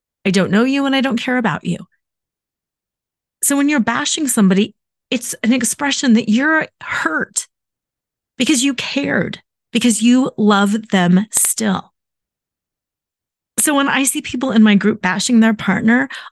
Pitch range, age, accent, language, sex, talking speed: 200-240 Hz, 30-49, American, English, female, 145 wpm